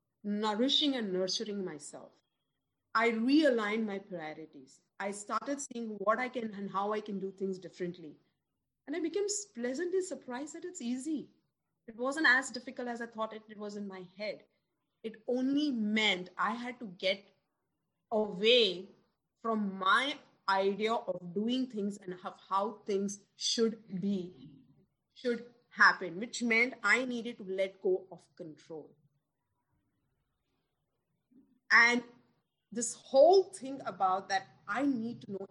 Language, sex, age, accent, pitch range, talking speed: English, female, 30-49, Indian, 185-260 Hz, 140 wpm